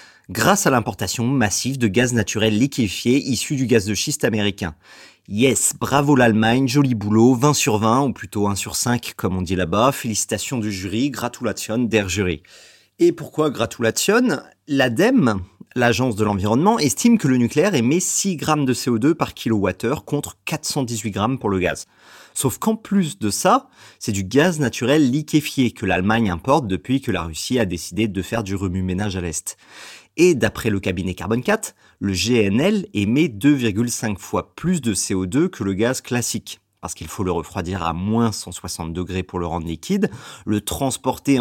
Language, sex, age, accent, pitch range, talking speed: French, male, 30-49, French, 100-140 Hz, 170 wpm